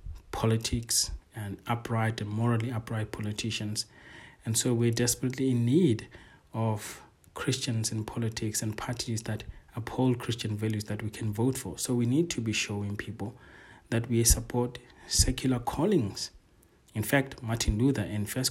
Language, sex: English, male